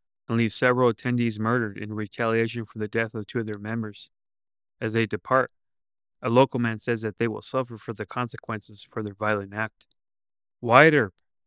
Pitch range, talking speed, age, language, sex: 110-130 Hz, 185 wpm, 30-49, English, male